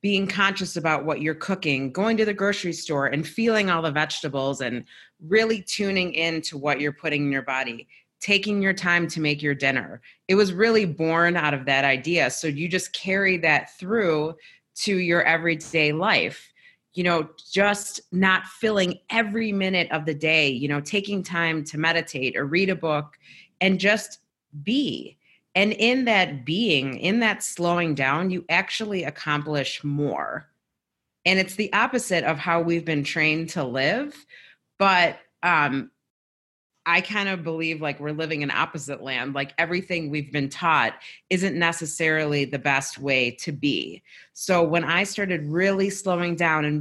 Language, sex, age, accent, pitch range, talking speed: English, female, 30-49, American, 145-190 Hz, 165 wpm